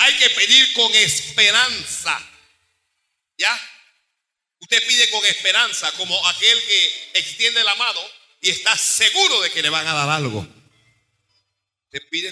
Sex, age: male, 50-69